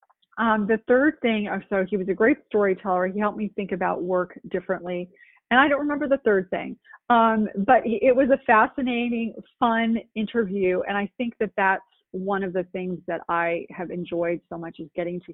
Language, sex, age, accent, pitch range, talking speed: English, female, 30-49, American, 175-215 Hz, 195 wpm